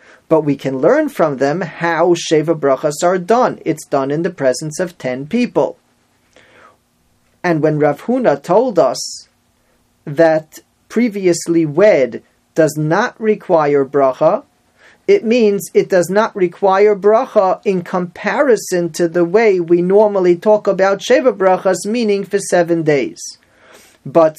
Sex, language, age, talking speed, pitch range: male, English, 40-59, 135 wpm, 155-205 Hz